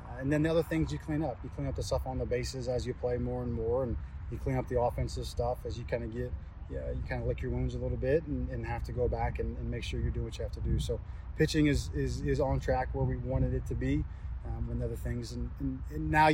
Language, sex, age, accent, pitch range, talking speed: English, male, 20-39, American, 115-135 Hz, 310 wpm